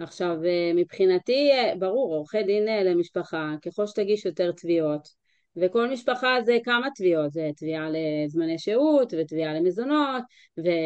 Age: 30-49